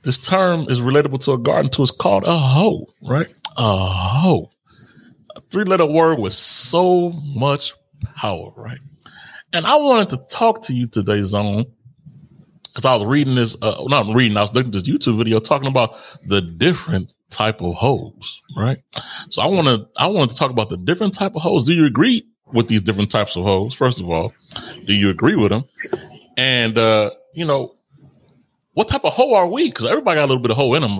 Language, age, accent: English, 30-49, American